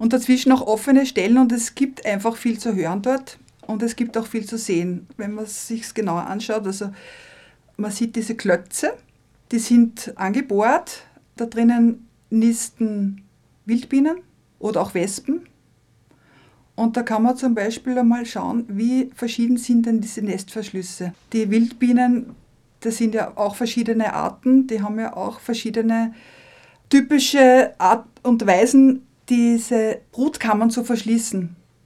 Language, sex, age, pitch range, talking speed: German, female, 50-69, 215-250 Hz, 145 wpm